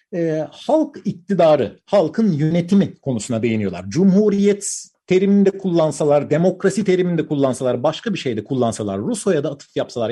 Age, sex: 50-69, male